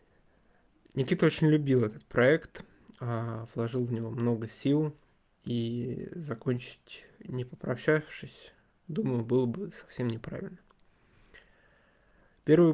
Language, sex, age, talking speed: Russian, male, 20-39, 95 wpm